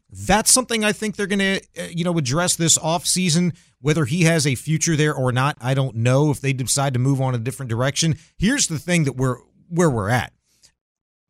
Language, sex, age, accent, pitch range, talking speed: English, male, 40-59, American, 135-195 Hz, 205 wpm